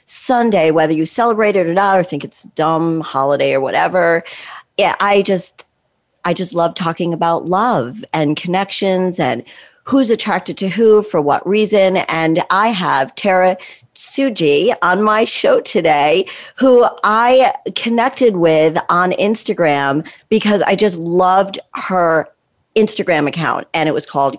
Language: English